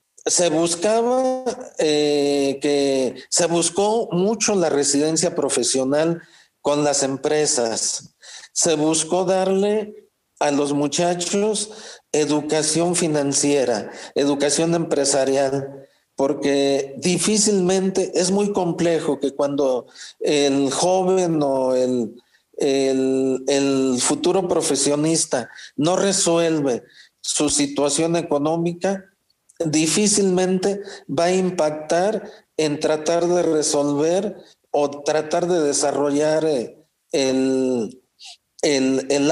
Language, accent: Spanish, Mexican